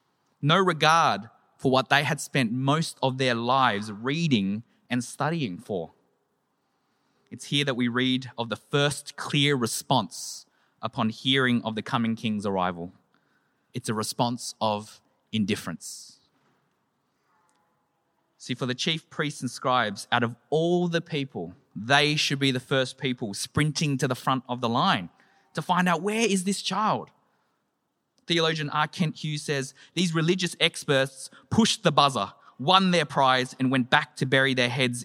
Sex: male